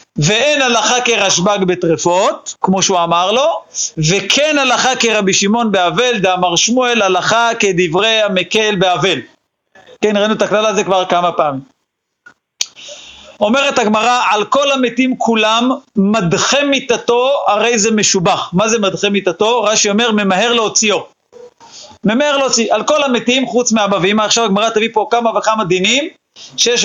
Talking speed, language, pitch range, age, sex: 140 wpm, Hebrew, 190-240 Hz, 40-59, male